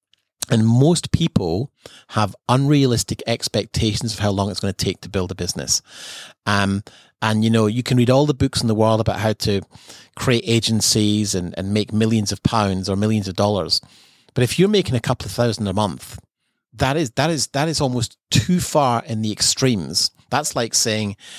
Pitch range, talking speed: 100-125 Hz, 195 wpm